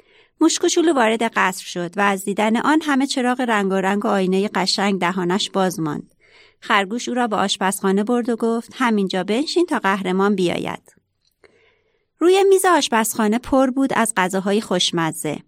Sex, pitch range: female, 195-265 Hz